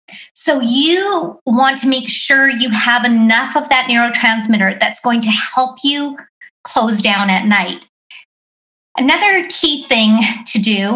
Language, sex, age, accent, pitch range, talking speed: English, female, 40-59, American, 215-285 Hz, 140 wpm